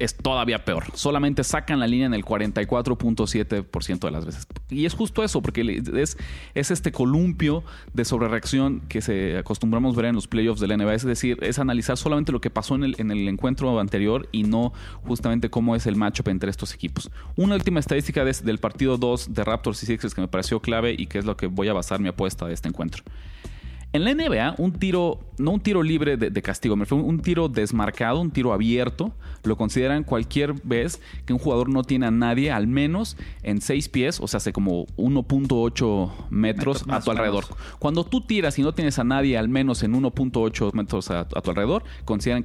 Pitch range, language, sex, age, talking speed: 105-135 Hz, Spanish, male, 30-49, 210 wpm